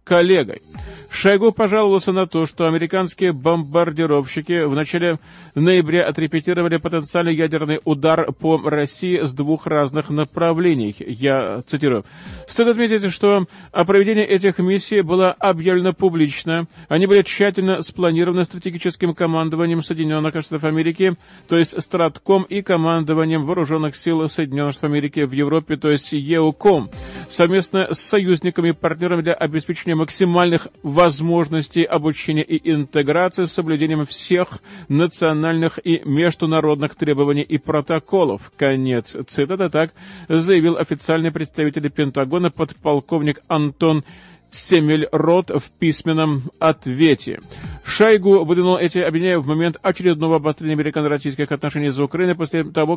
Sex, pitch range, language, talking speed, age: male, 155-180 Hz, Russian, 120 wpm, 40-59